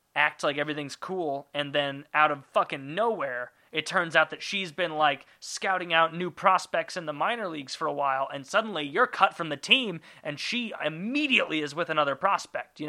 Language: English